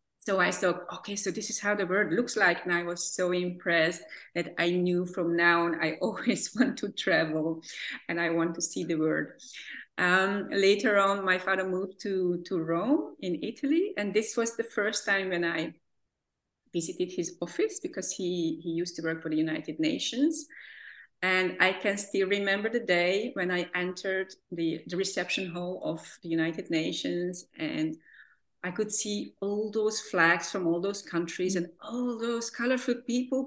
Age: 30-49